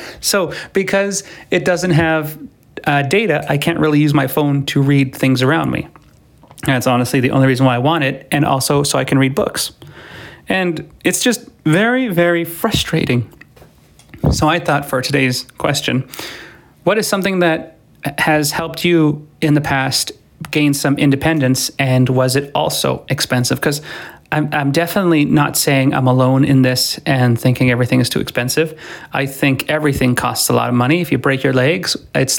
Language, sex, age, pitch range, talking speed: English, male, 30-49, 135-165 Hz, 170 wpm